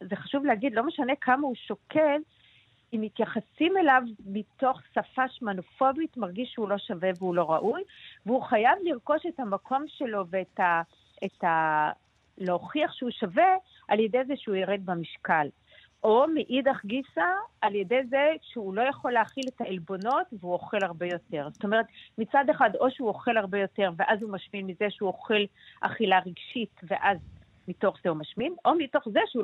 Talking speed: 160 wpm